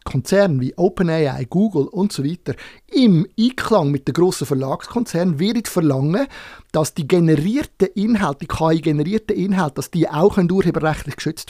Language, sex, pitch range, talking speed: German, male, 160-210 Hz, 140 wpm